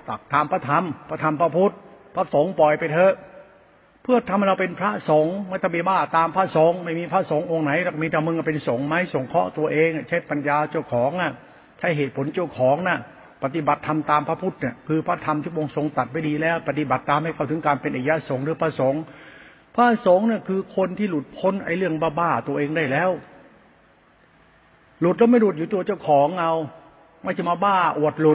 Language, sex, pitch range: Thai, male, 150-175 Hz